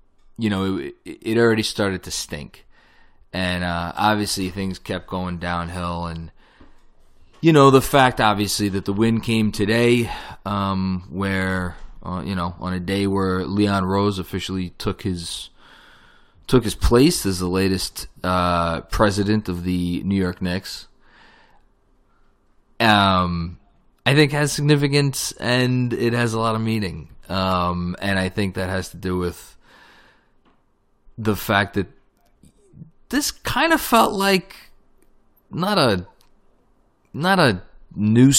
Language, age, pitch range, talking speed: English, 20-39, 90-115 Hz, 135 wpm